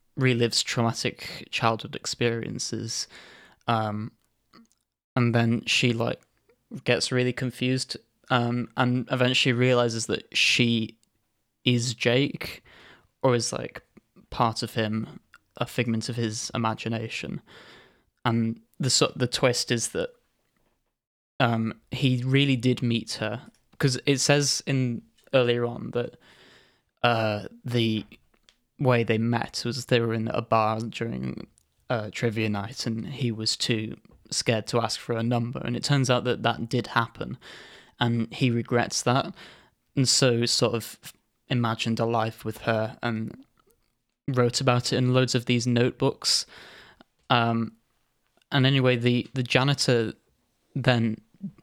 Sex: male